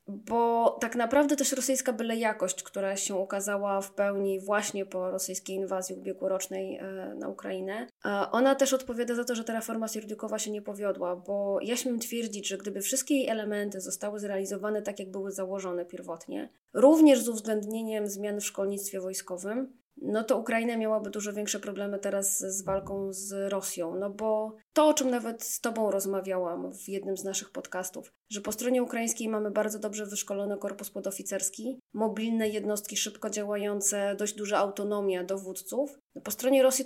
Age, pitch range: 20-39, 195-230 Hz